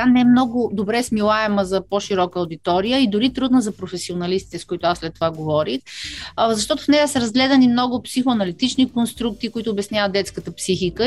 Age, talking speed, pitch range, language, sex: 30-49, 170 wpm, 180-230 Hz, Bulgarian, female